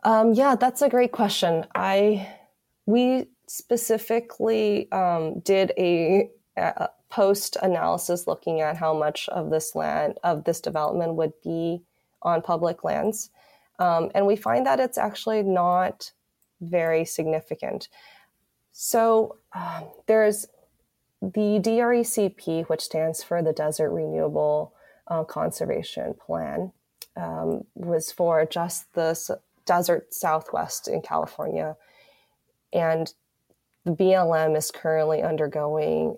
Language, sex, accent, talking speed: English, female, American, 115 wpm